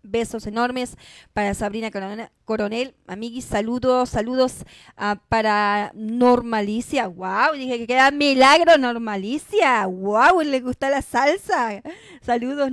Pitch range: 210-260 Hz